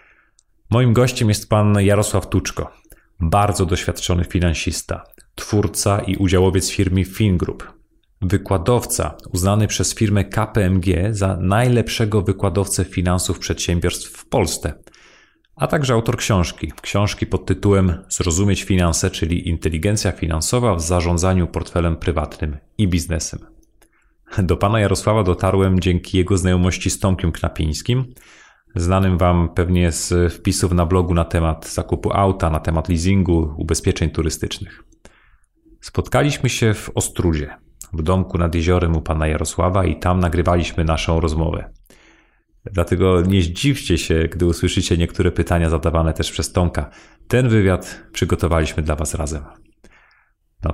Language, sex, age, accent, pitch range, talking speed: Polish, male, 30-49, native, 85-100 Hz, 125 wpm